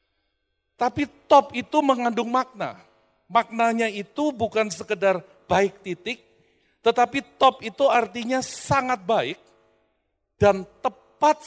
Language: Indonesian